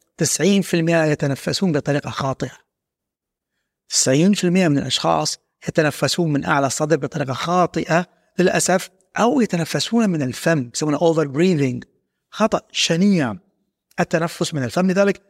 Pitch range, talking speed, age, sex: 150-210 Hz, 105 wpm, 30-49, male